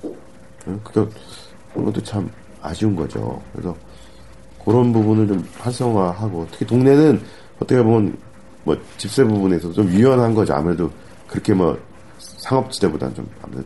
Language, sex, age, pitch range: Korean, male, 40-59, 85-115 Hz